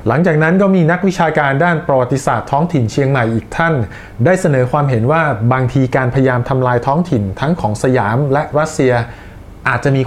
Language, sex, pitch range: Thai, male, 125-165 Hz